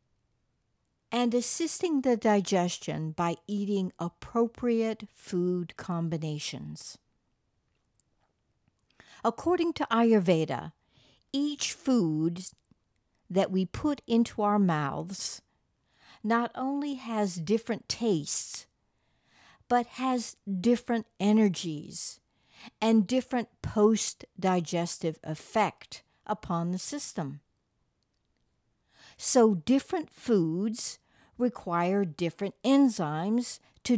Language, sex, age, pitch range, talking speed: English, female, 60-79, 170-235 Hz, 75 wpm